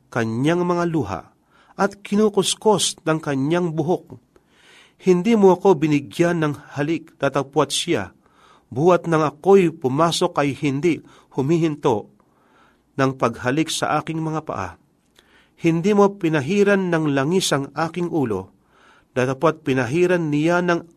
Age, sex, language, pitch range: 40-59, male, Filipino, 125-175 Hz